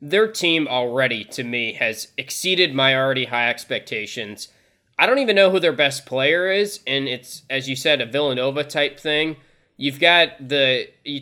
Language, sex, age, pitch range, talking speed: English, male, 20-39, 130-160 Hz, 175 wpm